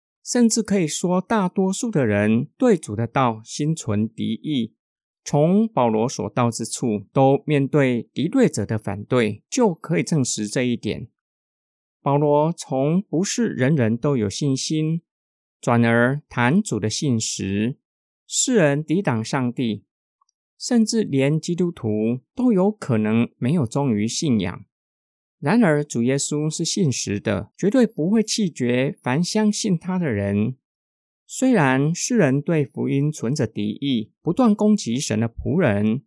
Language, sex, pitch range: Chinese, male, 115-180 Hz